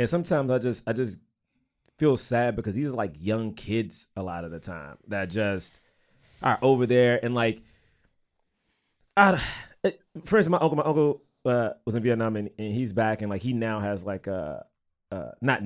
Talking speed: 190 wpm